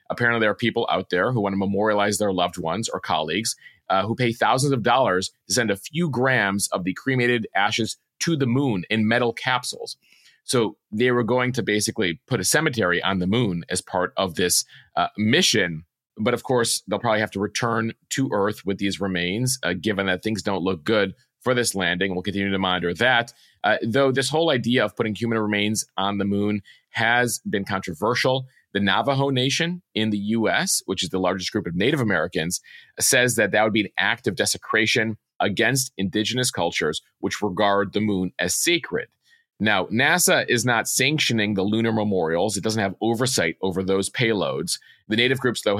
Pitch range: 95-120 Hz